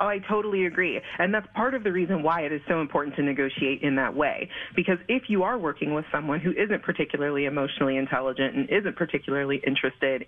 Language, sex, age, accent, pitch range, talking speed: English, female, 30-49, American, 140-170 Hz, 210 wpm